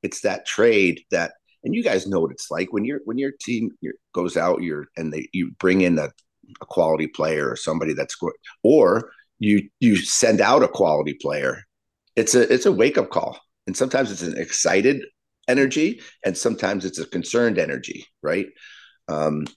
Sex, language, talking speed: male, English, 185 wpm